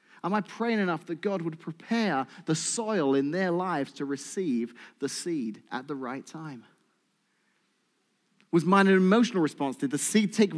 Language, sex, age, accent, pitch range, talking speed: English, male, 30-49, British, 145-210 Hz, 170 wpm